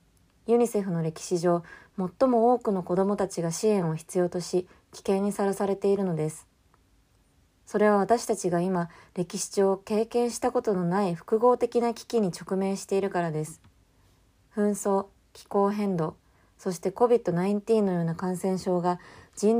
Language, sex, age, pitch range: Japanese, female, 20-39, 165-220 Hz